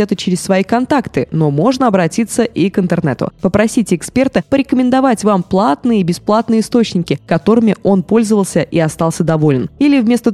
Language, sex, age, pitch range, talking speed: Russian, female, 20-39, 165-230 Hz, 150 wpm